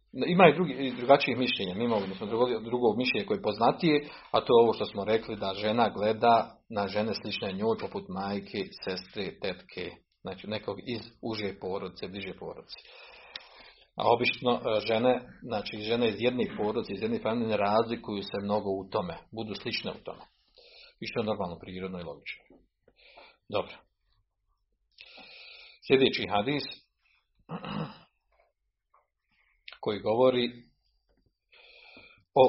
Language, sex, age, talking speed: Croatian, male, 40-59, 130 wpm